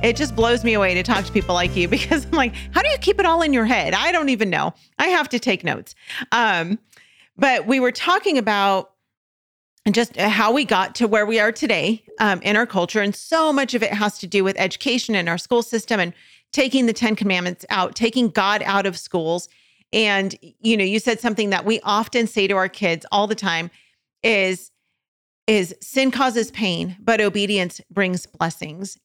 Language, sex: English, female